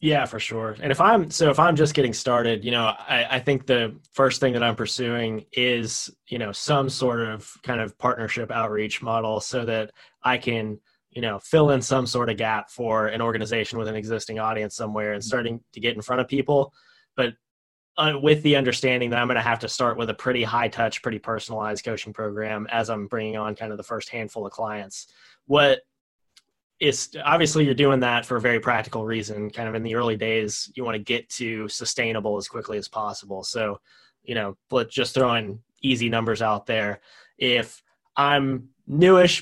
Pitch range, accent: 110-130 Hz, American